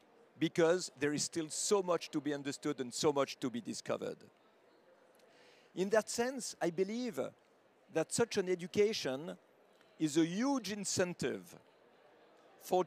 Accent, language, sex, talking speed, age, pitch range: French, English, male, 140 wpm, 50-69, 155-210 Hz